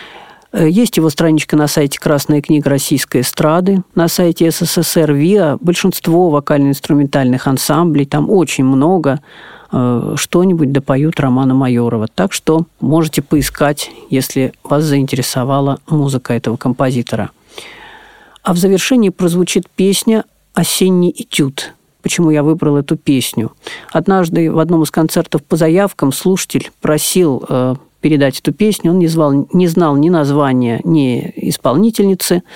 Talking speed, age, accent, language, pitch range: 120 wpm, 40-59, native, Russian, 140-180 Hz